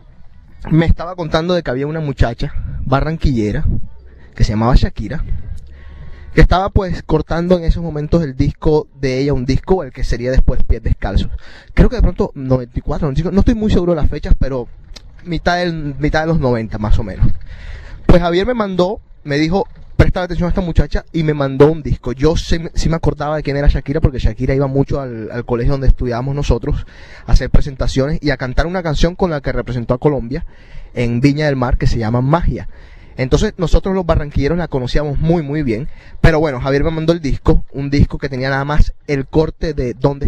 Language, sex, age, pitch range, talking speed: Spanish, male, 20-39, 125-160 Hz, 205 wpm